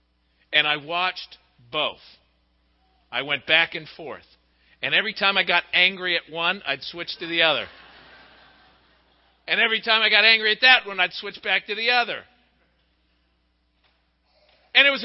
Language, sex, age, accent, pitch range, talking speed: English, male, 50-69, American, 155-240 Hz, 160 wpm